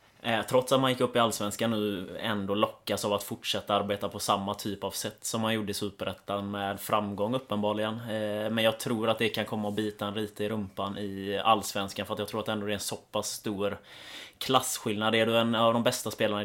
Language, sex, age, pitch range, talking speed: English, male, 20-39, 100-115 Hz, 225 wpm